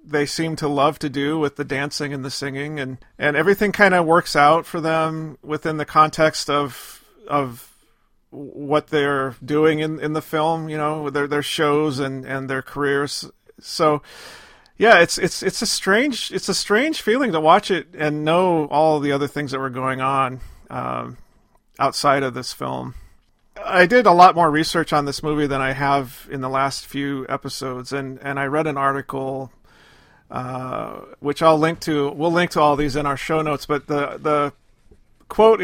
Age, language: 40-59, English